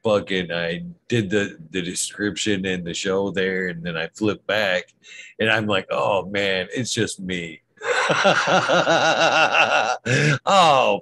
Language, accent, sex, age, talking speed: English, American, male, 50-69, 130 wpm